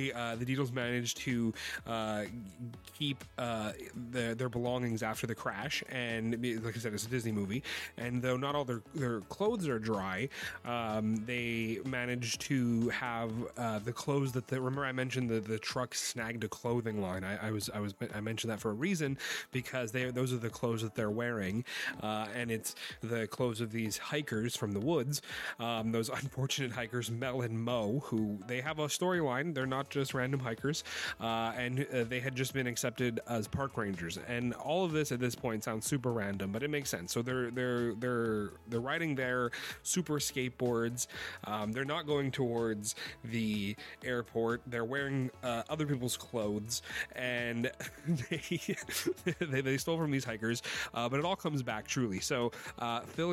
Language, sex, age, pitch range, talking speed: English, male, 30-49, 115-135 Hz, 185 wpm